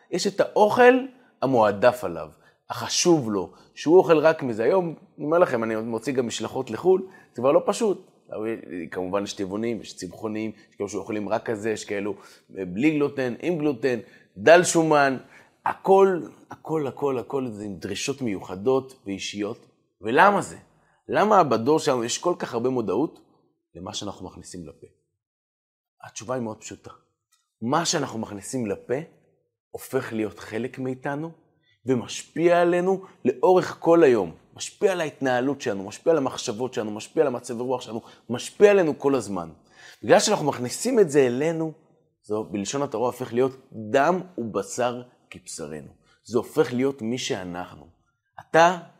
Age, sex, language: 30-49, male, Hebrew